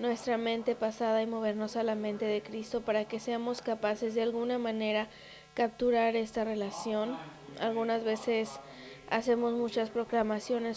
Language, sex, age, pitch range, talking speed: English, female, 20-39, 210-235 Hz, 140 wpm